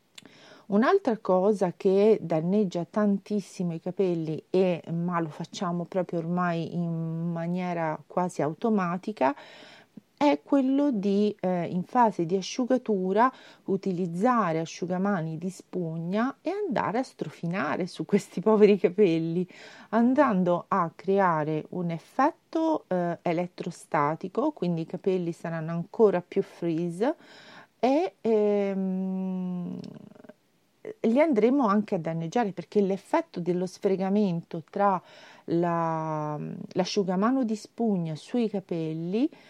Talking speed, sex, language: 100 wpm, female, Italian